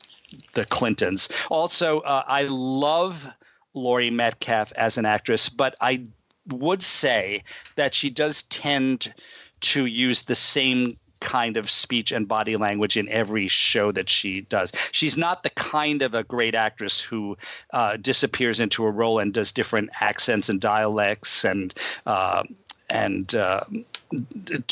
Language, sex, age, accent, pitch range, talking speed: English, male, 40-59, American, 110-140 Hz, 140 wpm